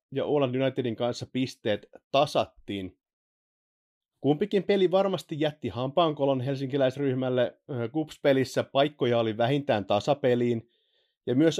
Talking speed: 100 wpm